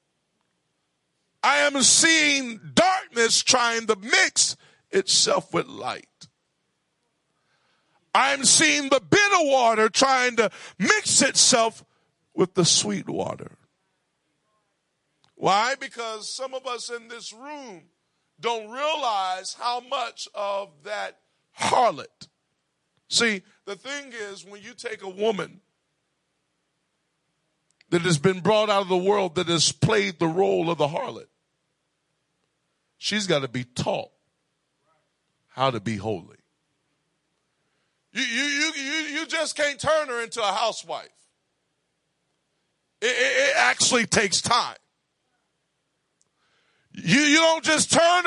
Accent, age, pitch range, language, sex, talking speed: American, 50-69, 200-290 Hz, English, male, 115 wpm